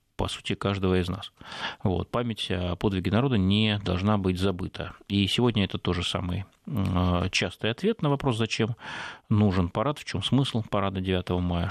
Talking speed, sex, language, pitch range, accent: 160 wpm, male, Russian, 90-110 Hz, native